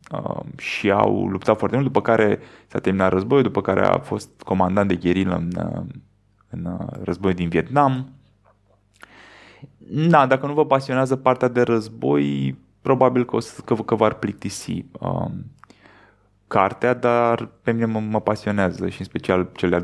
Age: 20-39